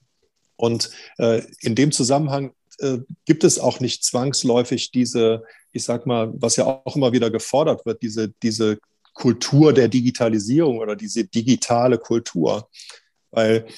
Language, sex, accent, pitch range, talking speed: German, male, German, 115-130 Hz, 140 wpm